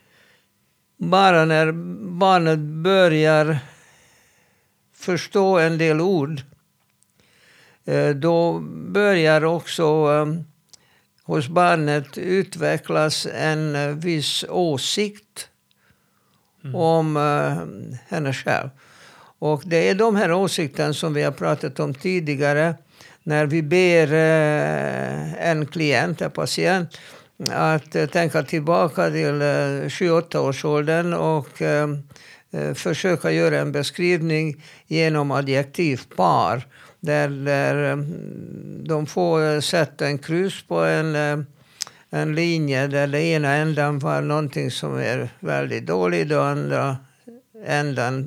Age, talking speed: 60-79, 90 wpm